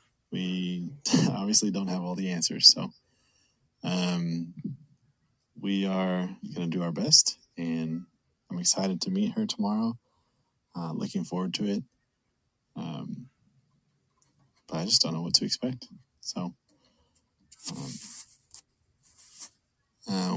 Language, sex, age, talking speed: English, male, 20-39, 115 wpm